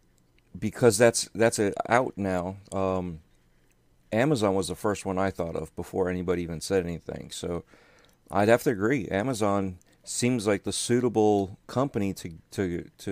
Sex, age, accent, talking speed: male, 40-59, American, 155 wpm